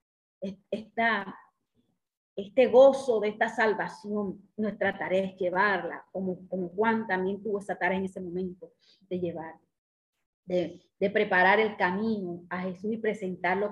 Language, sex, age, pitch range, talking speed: Spanish, female, 30-49, 185-245 Hz, 135 wpm